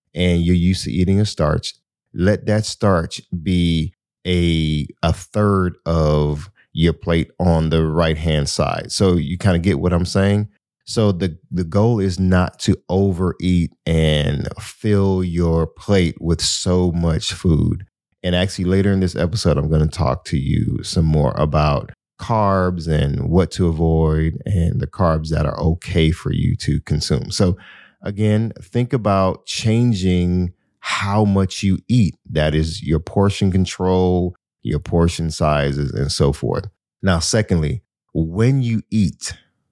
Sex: male